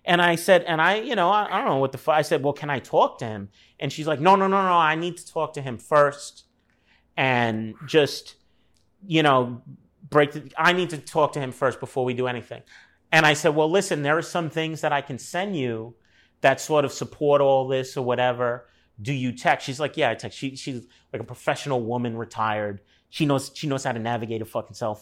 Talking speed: 235 wpm